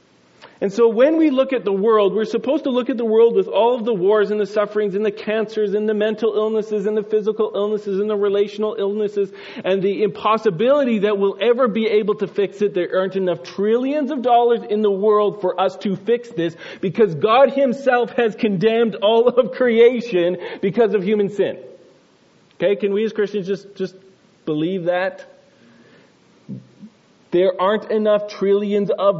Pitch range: 165-215 Hz